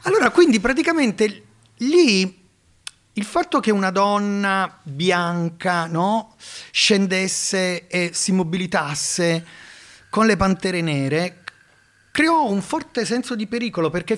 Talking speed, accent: 105 wpm, native